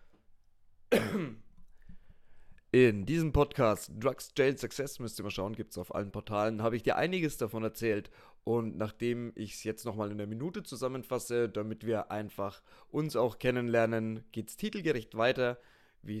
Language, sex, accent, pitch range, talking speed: German, male, German, 105-130 Hz, 150 wpm